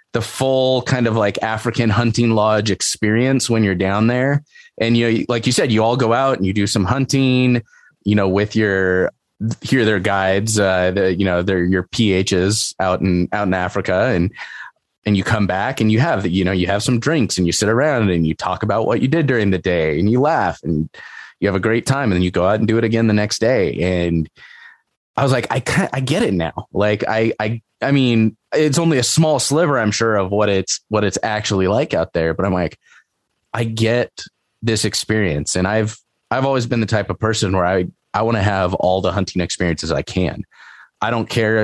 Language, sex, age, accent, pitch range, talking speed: English, male, 20-39, American, 95-115 Hz, 225 wpm